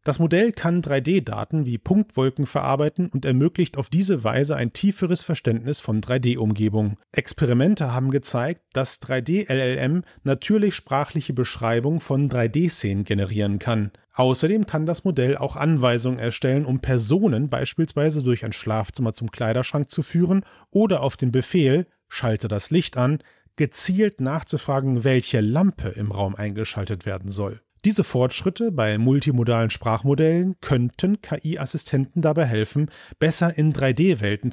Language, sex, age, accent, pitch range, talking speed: German, male, 40-59, German, 120-165 Hz, 135 wpm